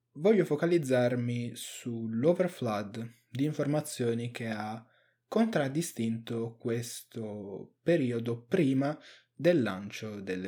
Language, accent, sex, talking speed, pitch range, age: Italian, native, male, 80 wpm, 115-150 Hz, 20-39